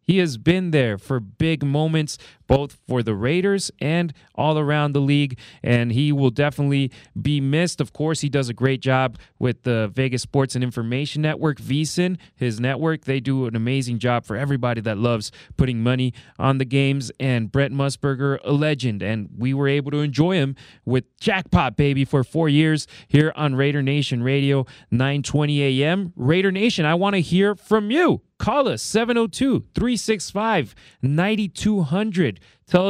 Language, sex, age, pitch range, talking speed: English, male, 30-49, 130-175 Hz, 165 wpm